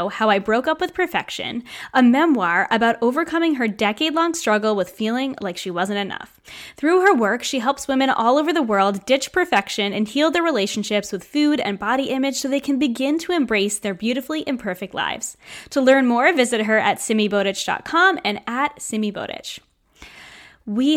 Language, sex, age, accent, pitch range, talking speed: English, female, 10-29, American, 205-260 Hz, 175 wpm